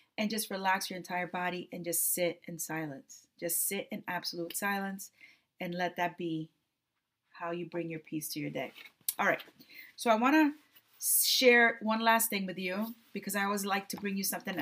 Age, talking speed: 30-49, 195 wpm